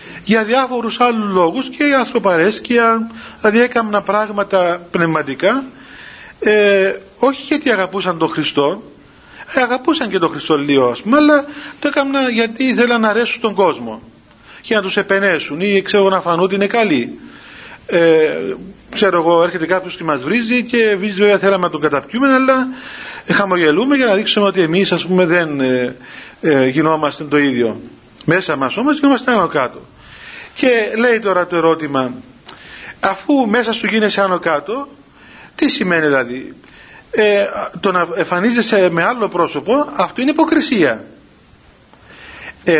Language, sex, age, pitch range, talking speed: Greek, male, 40-59, 170-250 Hz, 150 wpm